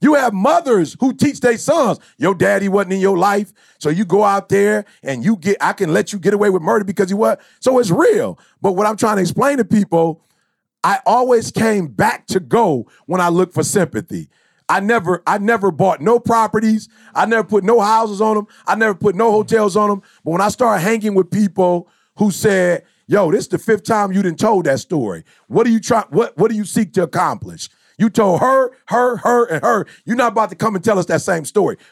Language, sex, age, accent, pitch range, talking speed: English, male, 40-59, American, 185-230 Hz, 235 wpm